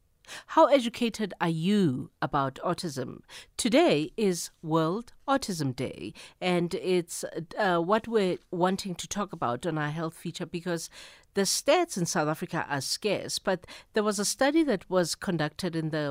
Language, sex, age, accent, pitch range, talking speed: English, female, 50-69, South African, 155-200 Hz, 155 wpm